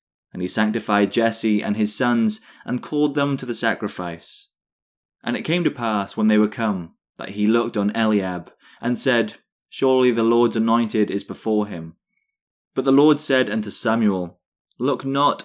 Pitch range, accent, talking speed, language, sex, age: 105-130 Hz, British, 170 wpm, English, male, 20-39